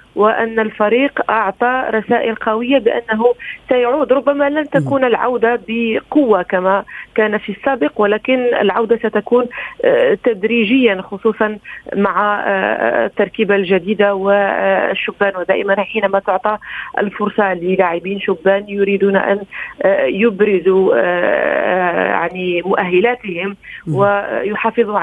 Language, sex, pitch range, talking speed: Arabic, female, 195-230 Hz, 90 wpm